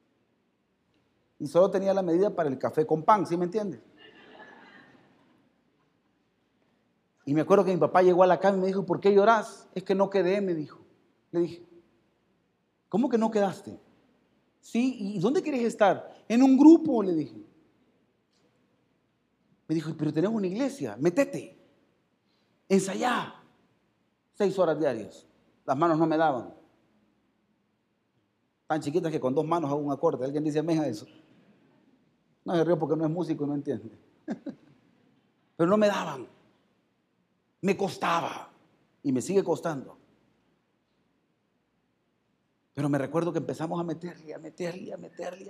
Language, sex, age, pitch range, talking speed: Spanish, male, 40-59, 155-195 Hz, 145 wpm